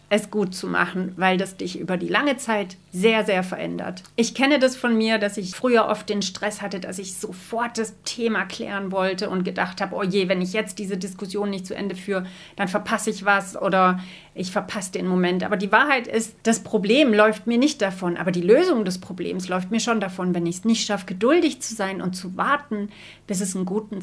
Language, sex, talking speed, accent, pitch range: German, female, 225 wpm, German, 185-225 Hz